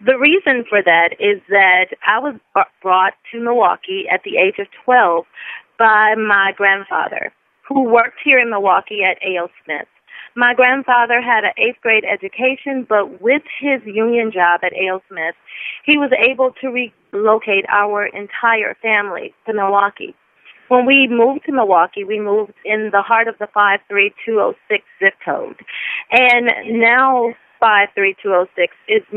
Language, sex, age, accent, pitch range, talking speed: English, female, 30-49, American, 195-245 Hz, 140 wpm